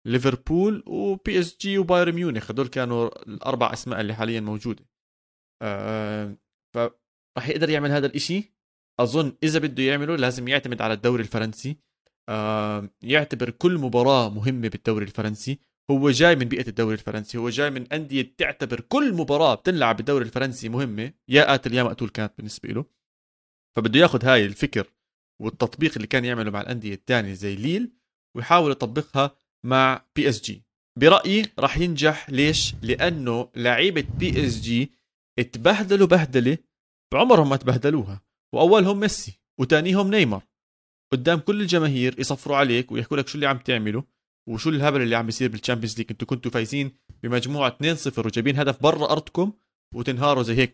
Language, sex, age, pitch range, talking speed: Arabic, male, 30-49, 110-145 Hz, 150 wpm